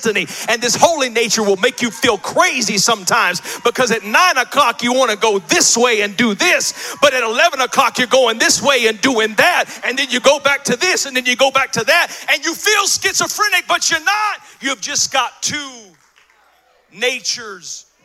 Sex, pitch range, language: male, 230-310 Hz, English